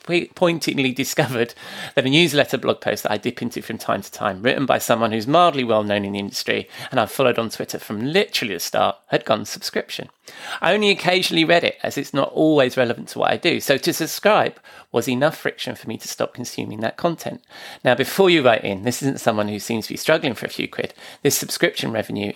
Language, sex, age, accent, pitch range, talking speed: English, male, 30-49, British, 115-155 Hz, 225 wpm